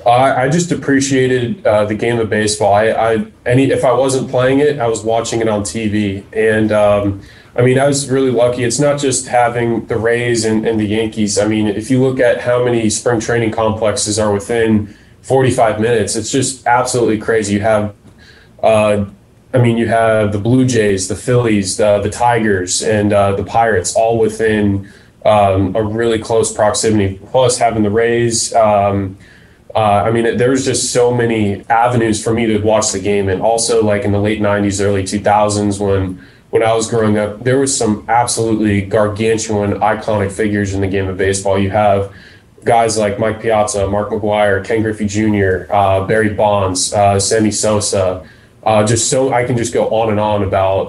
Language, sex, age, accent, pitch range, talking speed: English, male, 10-29, American, 100-115 Hz, 190 wpm